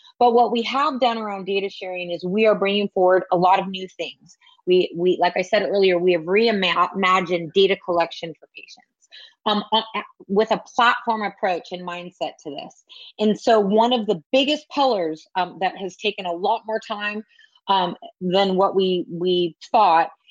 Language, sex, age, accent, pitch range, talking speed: English, female, 30-49, American, 180-215 Hz, 180 wpm